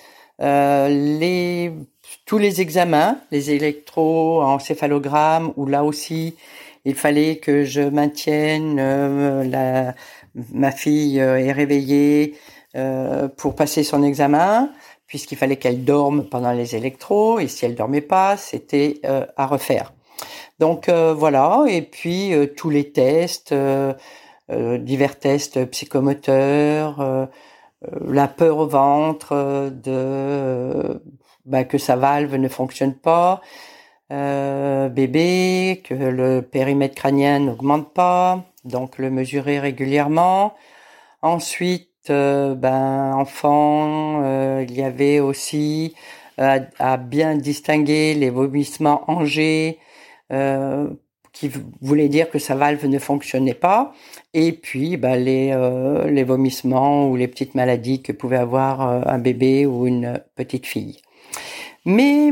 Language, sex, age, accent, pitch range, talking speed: French, female, 50-69, French, 135-155 Hz, 125 wpm